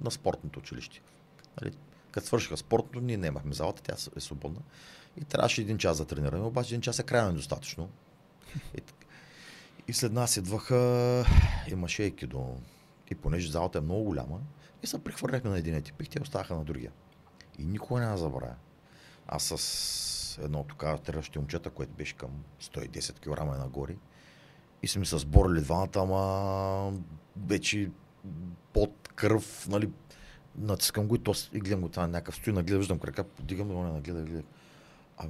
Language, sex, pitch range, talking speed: Bulgarian, male, 80-125 Hz, 160 wpm